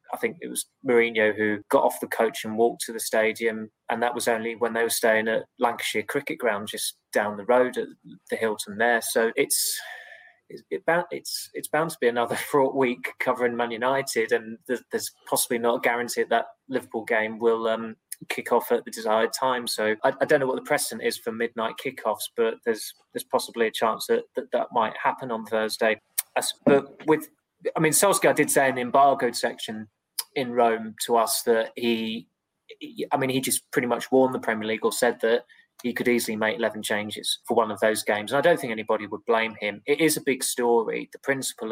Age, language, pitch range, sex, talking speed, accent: 20-39, English, 110-135 Hz, male, 220 wpm, British